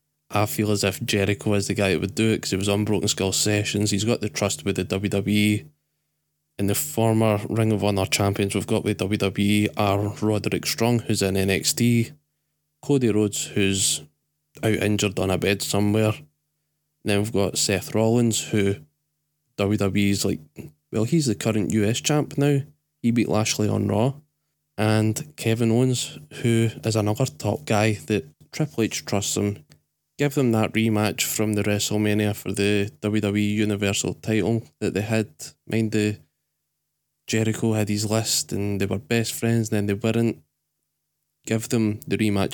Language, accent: English, British